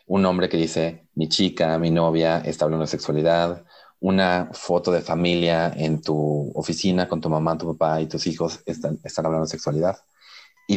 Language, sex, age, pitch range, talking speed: Spanish, male, 30-49, 80-95 Hz, 185 wpm